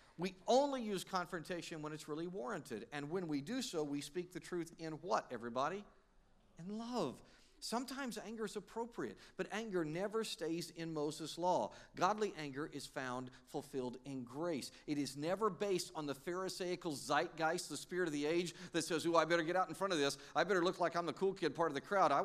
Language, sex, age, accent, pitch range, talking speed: English, male, 50-69, American, 140-180 Hz, 210 wpm